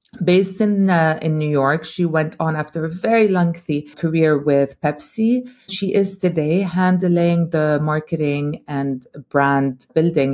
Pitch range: 150-195 Hz